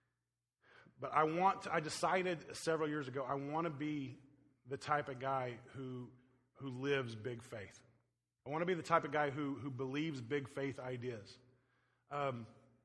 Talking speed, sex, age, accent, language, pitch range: 175 wpm, male, 30-49, American, English, 125-145 Hz